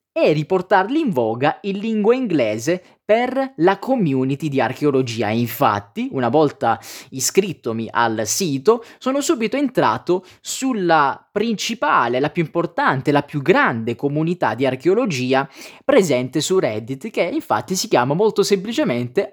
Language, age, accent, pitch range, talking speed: Italian, 20-39, native, 130-200 Hz, 125 wpm